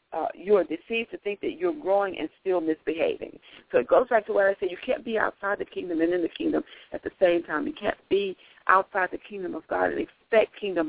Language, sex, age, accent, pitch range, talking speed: English, female, 50-69, American, 170-270 Hz, 250 wpm